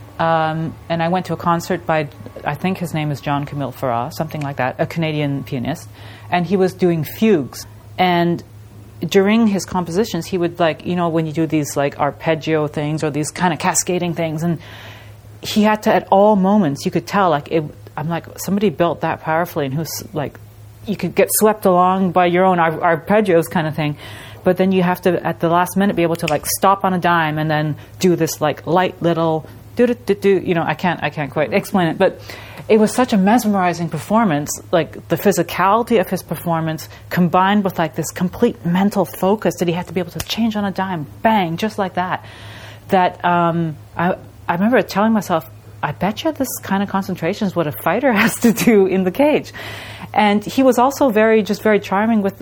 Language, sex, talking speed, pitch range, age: English, female, 210 wpm, 145-190 Hz, 30-49